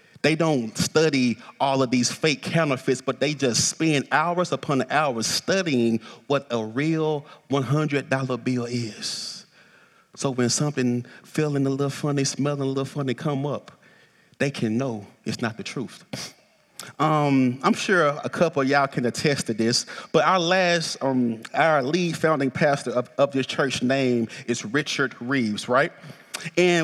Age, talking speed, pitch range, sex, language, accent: 30-49, 160 wpm, 140-190 Hz, male, English, American